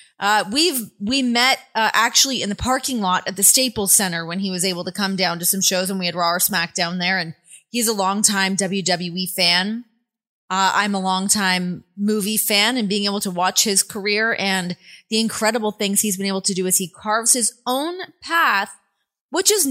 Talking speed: 205 wpm